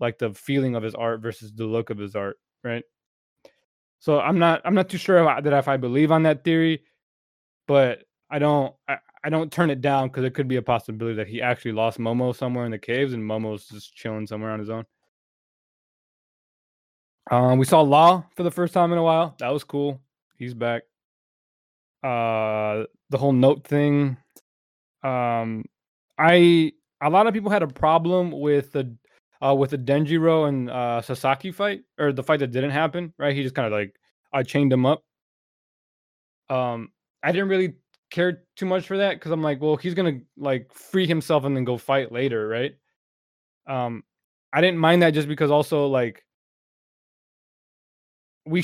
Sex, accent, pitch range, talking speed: male, American, 120-160 Hz, 185 wpm